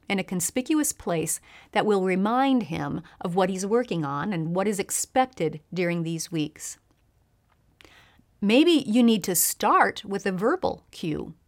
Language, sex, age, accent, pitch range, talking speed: English, female, 40-59, American, 170-240 Hz, 150 wpm